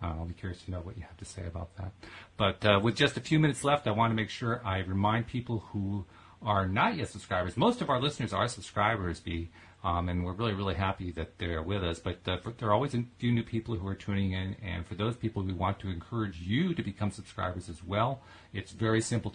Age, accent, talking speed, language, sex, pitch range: 40-59, American, 250 wpm, English, male, 90-105 Hz